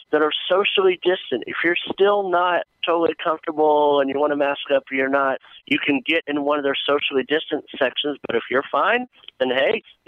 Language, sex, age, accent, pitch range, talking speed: English, male, 50-69, American, 120-155 Hz, 210 wpm